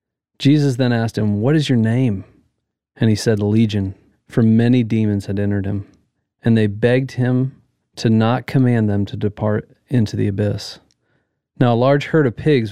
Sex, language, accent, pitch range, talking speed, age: male, English, American, 110-125 Hz, 175 wpm, 40-59